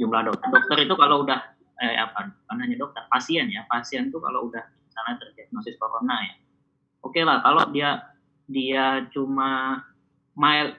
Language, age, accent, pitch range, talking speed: Indonesian, 20-39, native, 110-150 Hz, 145 wpm